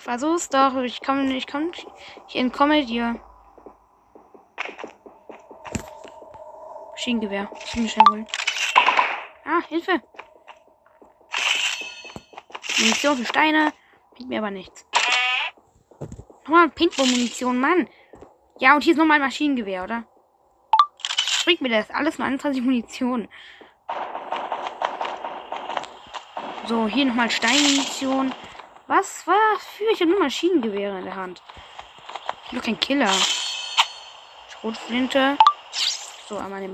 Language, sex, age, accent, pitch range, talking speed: German, female, 20-39, German, 230-305 Hz, 105 wpm